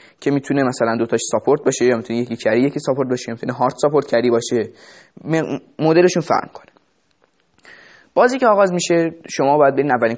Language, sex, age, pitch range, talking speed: Persian, male, 20-39, 125-155 Hz, 175 wpm